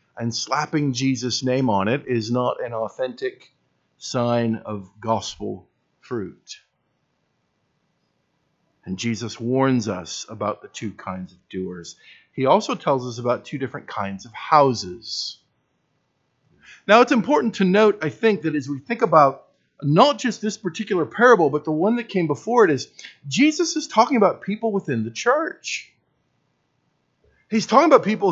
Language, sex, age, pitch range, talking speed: English, male, 50-69, 135-220 Hz, 150 wpm